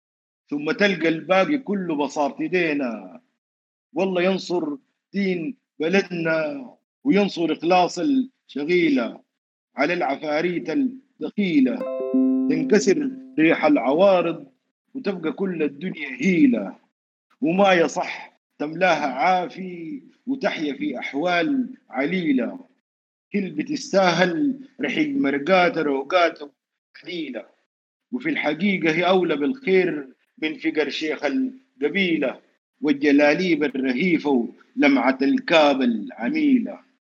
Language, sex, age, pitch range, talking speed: Arabic, male, 50-69, 155-260 Hz, 85 wpm